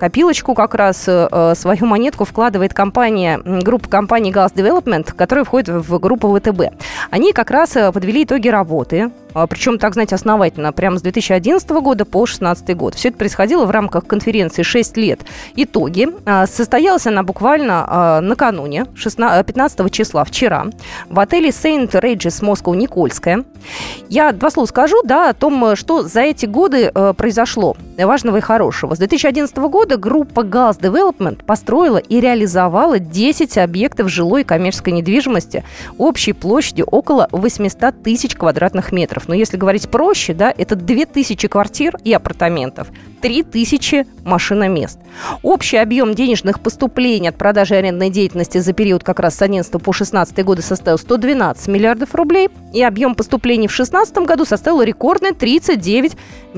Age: 20-39